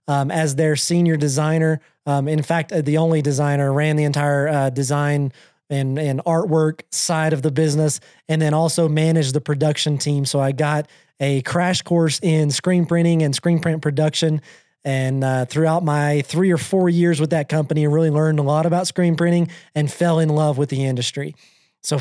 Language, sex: English, male